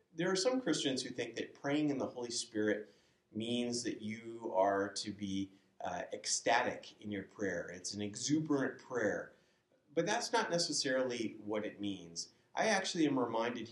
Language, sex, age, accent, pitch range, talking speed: English, male, 30-49, American, 105-150 Hz, 165 wpm